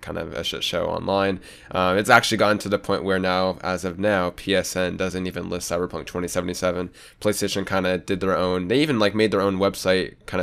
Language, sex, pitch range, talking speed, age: English, male, 90-100 Hz, 215 wpm, 20-39